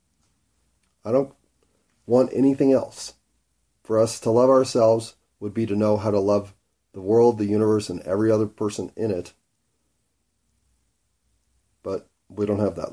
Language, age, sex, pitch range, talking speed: English, 40-59, male, 95-115 Hz, 150 wpm